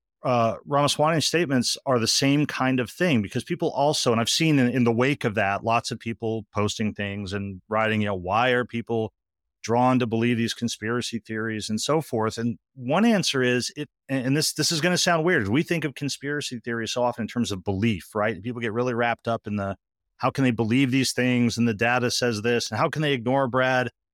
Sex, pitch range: male, 115-140 Hz